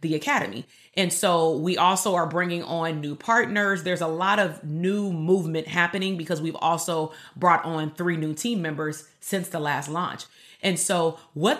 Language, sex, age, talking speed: English, female, 30-49, 175 wpm